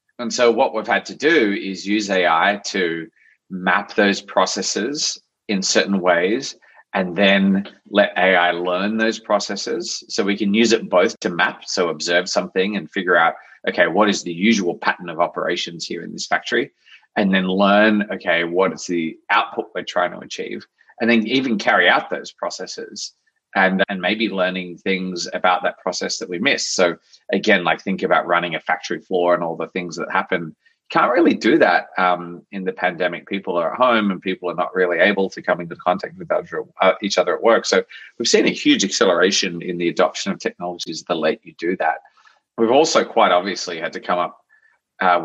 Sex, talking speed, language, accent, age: male, 195 wpm, English, Australian, 30-49